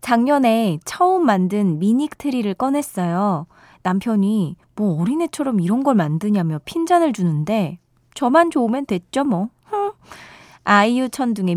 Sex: female